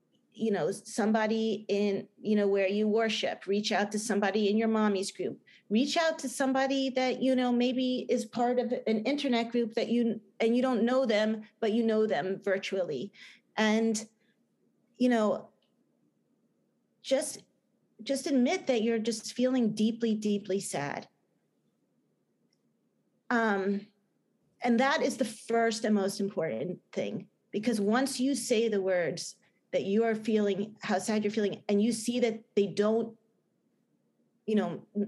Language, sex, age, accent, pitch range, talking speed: English, female, 30-49, American, 195-235 Hz, 150 wpm